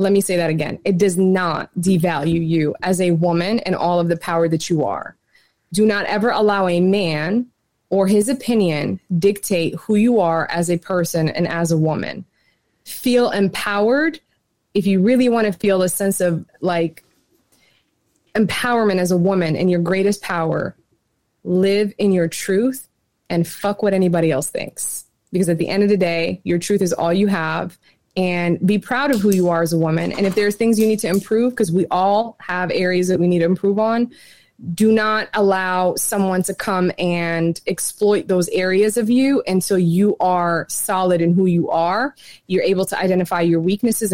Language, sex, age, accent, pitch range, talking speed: English, female, 20-39, American, 170-205 Hz, 190 wpm